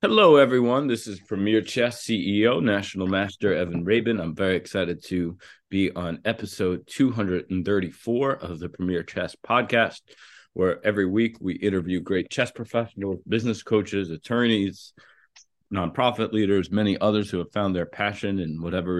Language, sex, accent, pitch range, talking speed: English, male, American, 90-105 Hz, 145 wpm